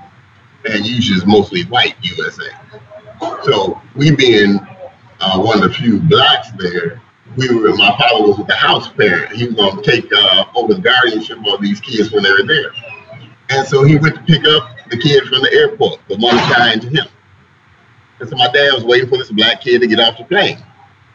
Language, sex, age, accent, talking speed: English, male, 30-49, American, 205 wpm